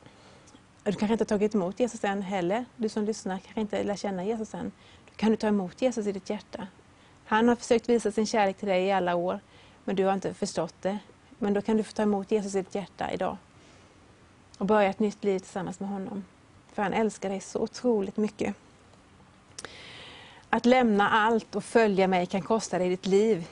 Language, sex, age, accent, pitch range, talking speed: Swedish, female, 30-49, native, 190-225 Hz, 210 wpm